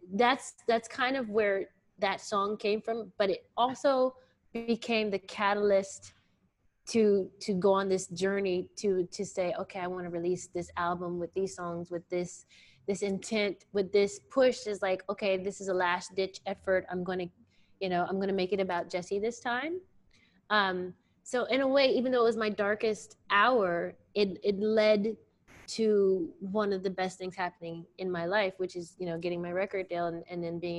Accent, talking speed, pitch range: American, 195 wpm, 175-220 Hz